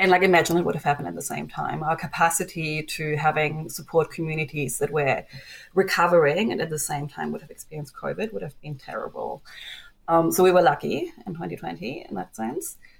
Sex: female